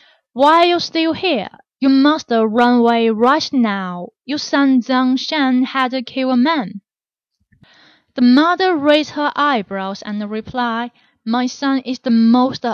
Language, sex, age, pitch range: Chinese, female, 20-39, 225-290 Hz